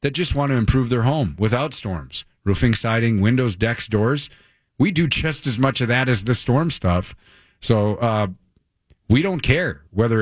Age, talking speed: 40-59, 180 wpm